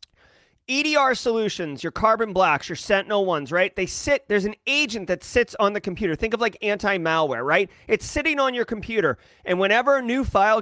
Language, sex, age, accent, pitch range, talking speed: English, male, 30-49, American, 185-230 Hz, 190 wpm